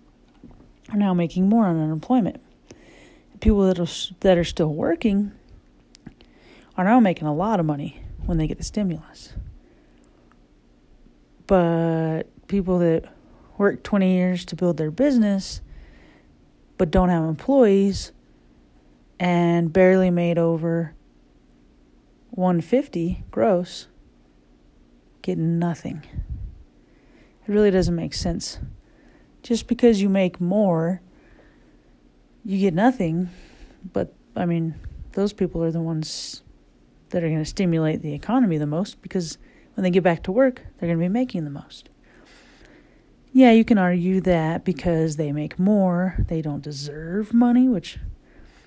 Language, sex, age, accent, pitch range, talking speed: English, female, 30-49, American, 145-190 Hz, 125 wpm